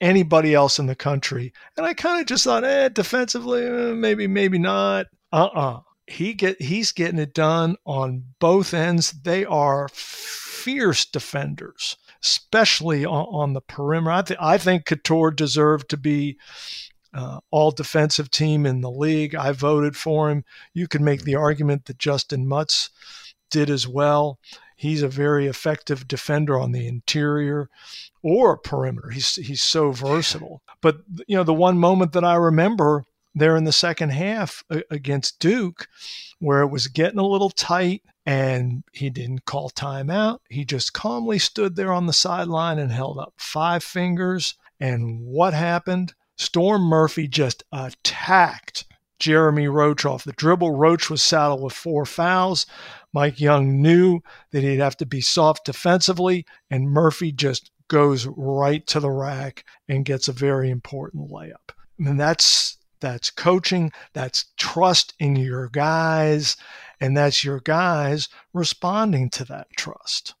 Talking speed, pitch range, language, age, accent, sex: 150 wpm, 140-175 Hz, English, 50-69, American, male